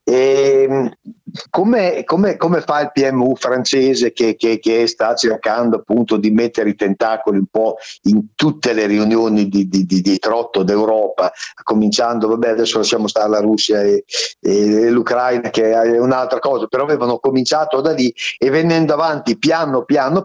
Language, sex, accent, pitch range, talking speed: Italian, male, native, 125-165 Hz, 150 wpm